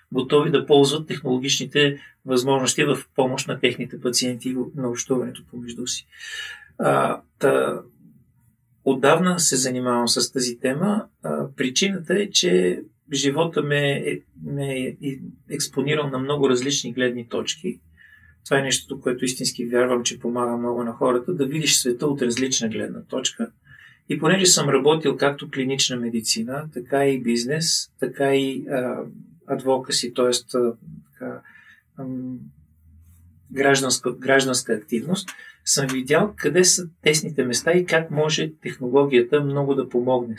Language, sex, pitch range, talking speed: Bulgarian, male, 120-145 Hz, 120 wpm